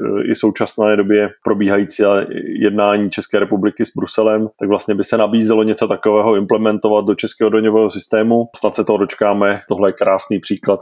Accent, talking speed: native, 170 wpm